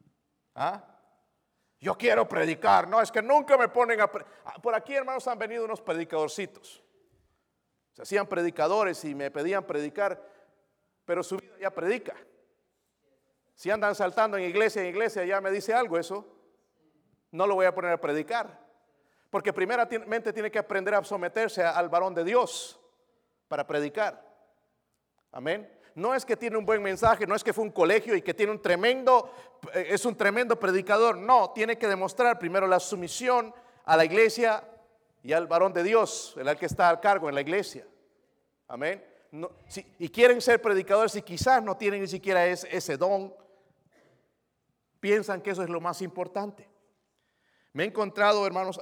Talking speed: 165 wpm